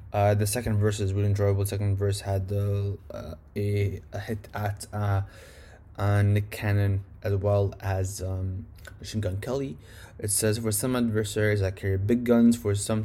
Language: English